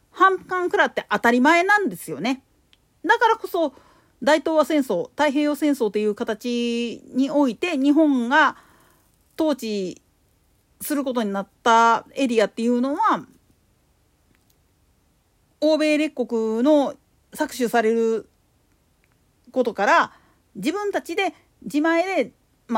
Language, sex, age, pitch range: Japanese, female, 40-59, 225-325 Hz